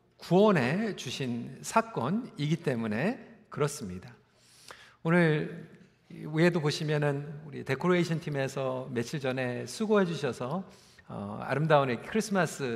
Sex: male